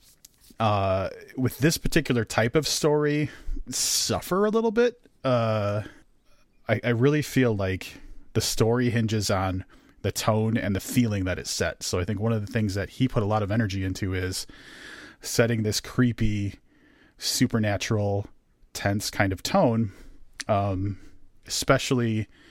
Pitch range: 100-125 Hz